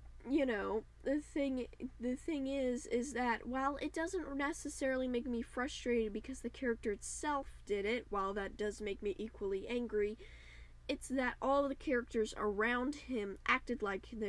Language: English